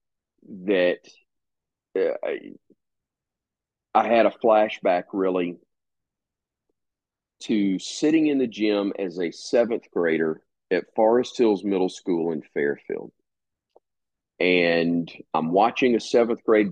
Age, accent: 40-59, American